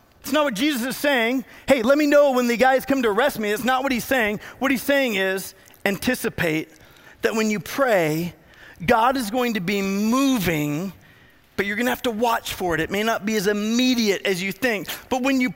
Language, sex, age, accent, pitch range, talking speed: English, male, 40-59, American, 235-300 Hz, 220 wpm